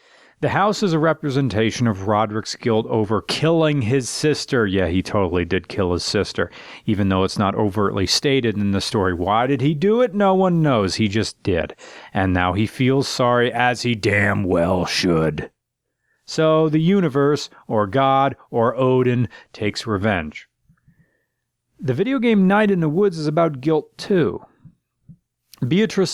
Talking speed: 160 wpm